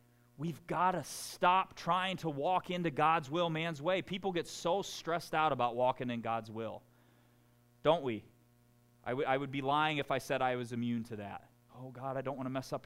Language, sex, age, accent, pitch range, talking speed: English, male, 30-49, American, 115-130 Hz, 215 wpm